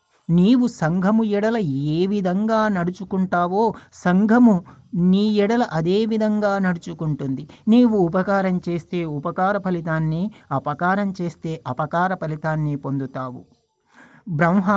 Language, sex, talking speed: Telugu, male, 95 wpm